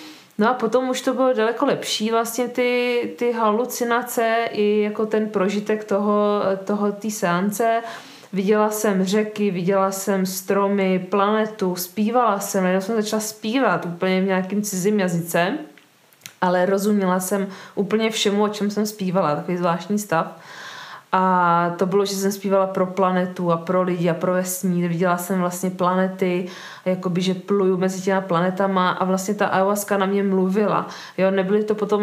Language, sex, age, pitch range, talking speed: Czech, female, 20-39, 185-210 Hz, 160 wpm